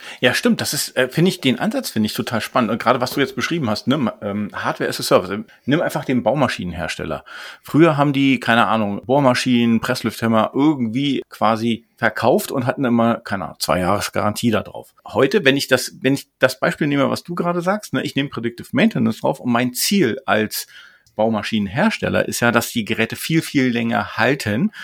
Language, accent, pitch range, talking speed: German, German, 115-155 Hz, 195 wpm